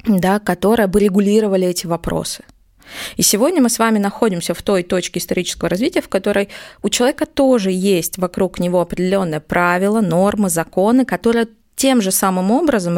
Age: 20-39